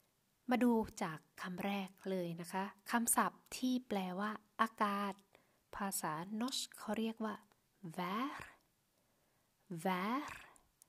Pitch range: 185-225 Hz